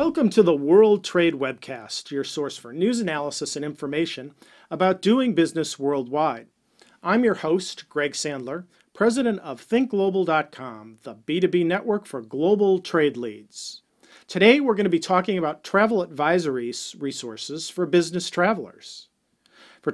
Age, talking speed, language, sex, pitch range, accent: 40-59, 140 wpm, English, male, 140-190 Hz, American